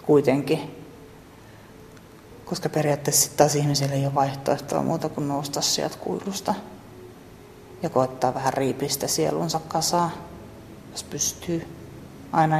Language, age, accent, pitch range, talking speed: Finnish, 30-49, native, 140-165 Hz, 100 wpm